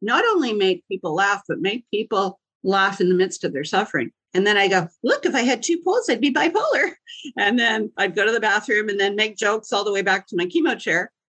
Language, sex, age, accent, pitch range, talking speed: English, female, 50-69, American, 170-230 Hz, 250 wpm